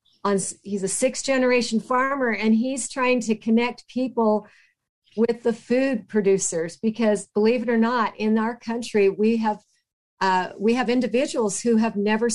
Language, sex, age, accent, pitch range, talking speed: English, female, 50-69, American, 195-225 Hz, 155 wpm